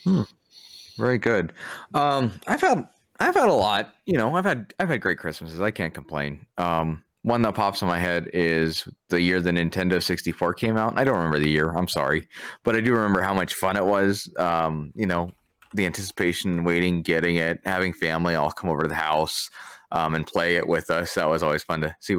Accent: American